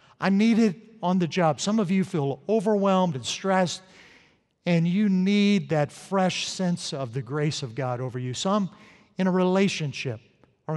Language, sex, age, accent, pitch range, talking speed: English, male, 50-69, American, 140-185 Hz, 175 wpm